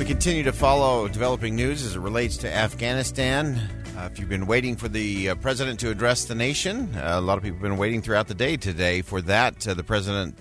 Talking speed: 235 wpm